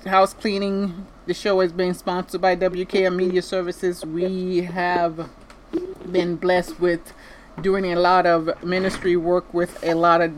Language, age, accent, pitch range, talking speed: English, 30-49, American, 165-190 Hz, 150 wpm